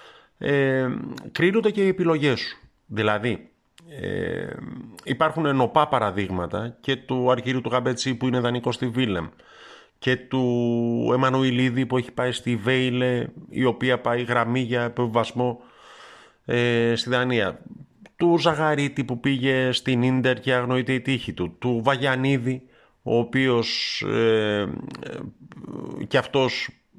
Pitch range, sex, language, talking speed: 110-130 Hz, male, Greek, 130 wpm